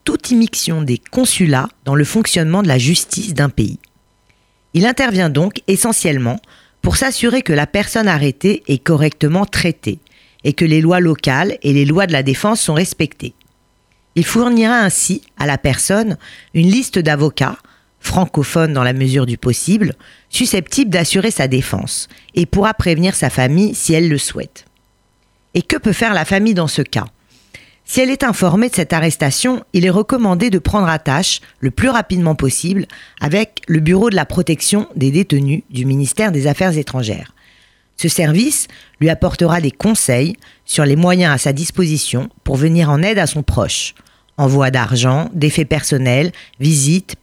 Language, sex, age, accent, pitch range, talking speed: French, female, 40-59, French, 140-195 Hz, 165 wpm